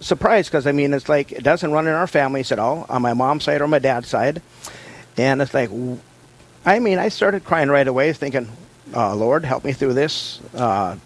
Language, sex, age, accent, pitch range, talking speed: English, male, 50-69, American, 125-150 Hz, 210 wpm